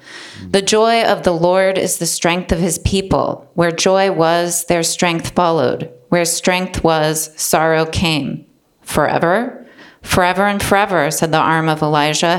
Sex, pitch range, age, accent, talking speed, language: female, 155-190 Hz, 30-49, American, 150 wpm, English